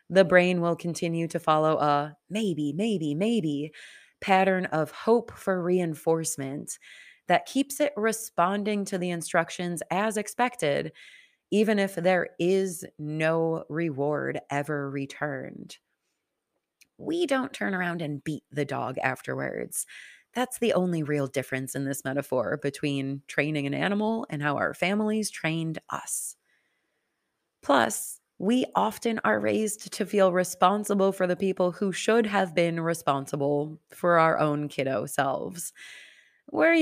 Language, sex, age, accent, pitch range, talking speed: English, female, 30-49, American, 155-205 Hz, 130 wpm